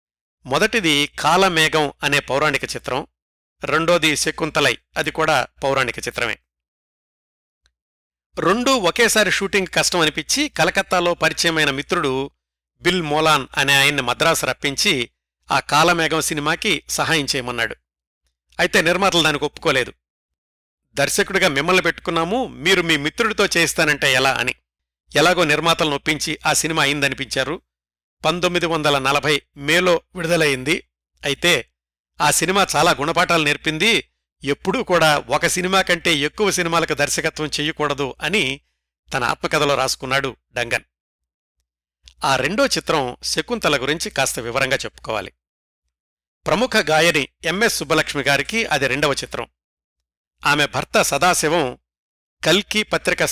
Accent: native